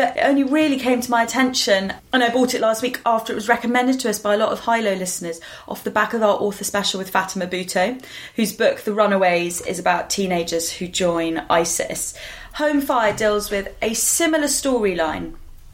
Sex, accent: female, British